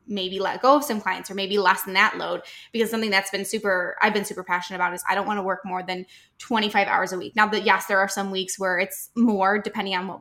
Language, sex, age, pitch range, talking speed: English, female, 10-29, 190-230 Hz, 270 wpm